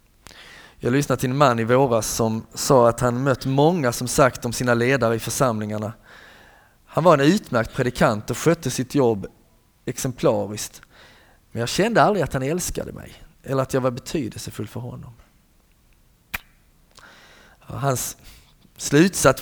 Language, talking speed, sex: Swedish, 145 wpm, male